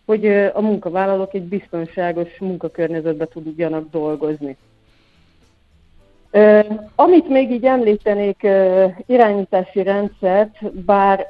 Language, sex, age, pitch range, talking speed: Hungarian, female, 50-69, 175-215 Hz, 80 wpm